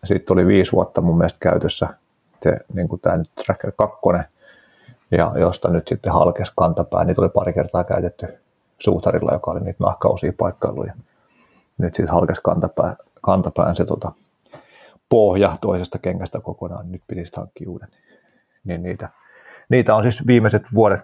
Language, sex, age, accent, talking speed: Finnish, male, 30-49, native, 145 wpm